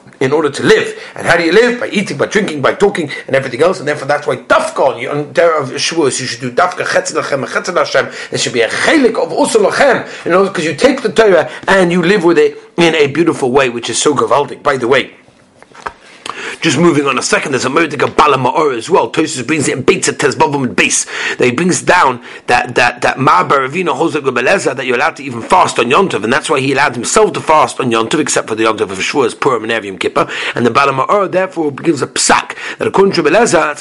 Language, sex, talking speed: English, male, 230 wpm